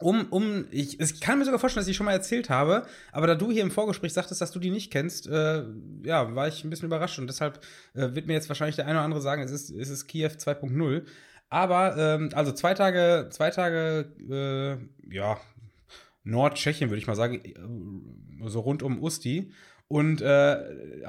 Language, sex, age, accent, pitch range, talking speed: German, male, 20-39, German, 140-170 Hz, 200 wpm